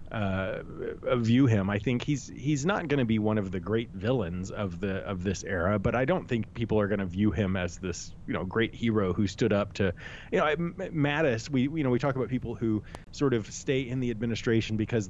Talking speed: 240 wpm